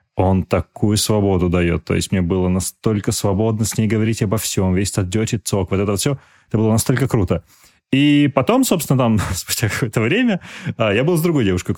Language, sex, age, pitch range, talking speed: Russian, male, 20-39, 95-125 Hz, 190 wpm